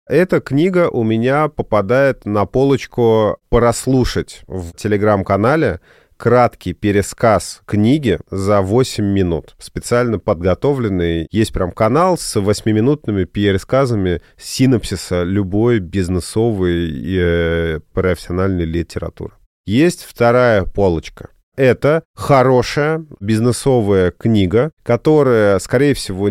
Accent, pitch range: native, 95-125 Hz